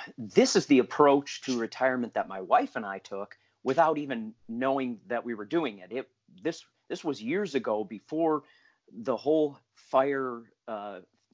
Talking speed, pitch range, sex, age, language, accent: 165 wpm, 120-165 Hz, male, 40-59, English, American